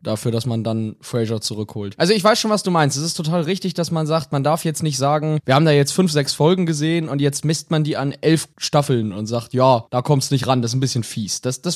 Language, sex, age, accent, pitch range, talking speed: German, male, 20-39, German, 130-185 Hz, 285 wpm